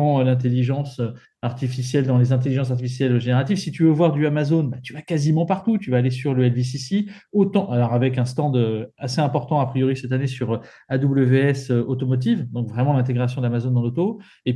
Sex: male